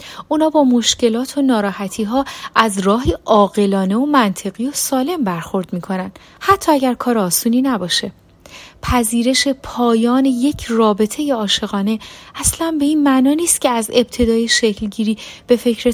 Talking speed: 135 wpm